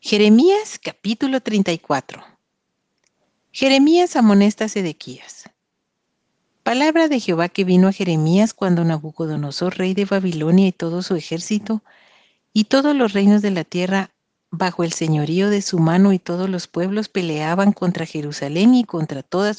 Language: Spanish